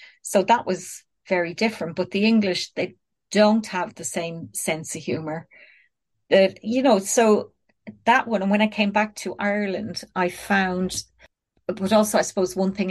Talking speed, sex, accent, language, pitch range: 175 wpm, female, Irish, English, 170-195 Hz